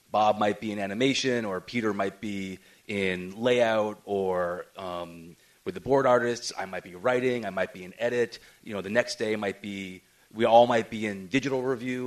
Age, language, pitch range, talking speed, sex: 30-49, English, 95-115 Hz, 200 wpm, male